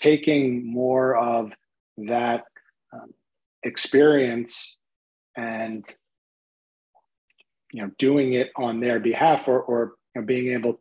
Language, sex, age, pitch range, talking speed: English, male, 30-49, 115-130 Hz, 110 wpm